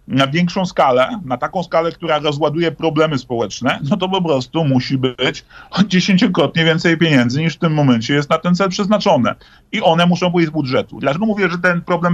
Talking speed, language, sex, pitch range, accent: 195 wpm, Polish, male, 130-165 Hz, native